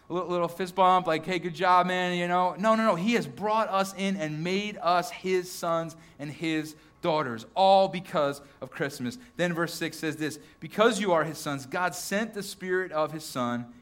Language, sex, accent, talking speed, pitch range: English, male, American, 210 wpm, 155-200 Hz